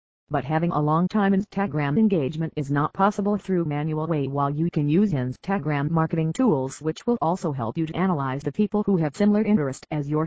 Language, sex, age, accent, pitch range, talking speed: English, female, 50-69, American, 140-185 Hz, 205 wpm